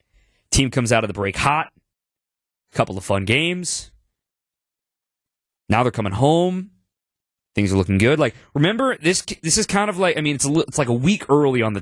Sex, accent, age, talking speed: male, American, 20-39, 200 wpm